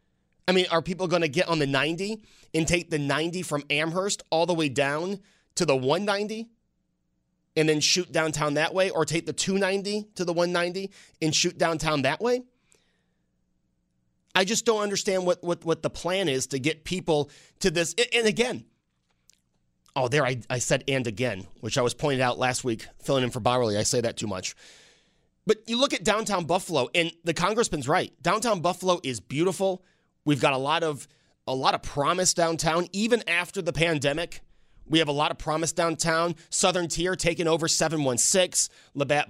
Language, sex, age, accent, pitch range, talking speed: English, male, 30-49, American, 140-185 Hz, 185 wpm